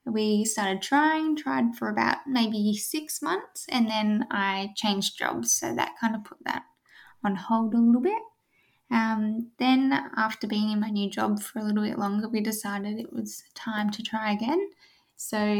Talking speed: 180 wpm